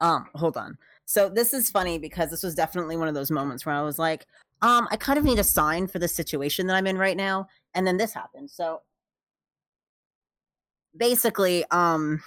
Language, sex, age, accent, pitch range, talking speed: English, female, 30-49, American, 150-190 Hz, 200 wpm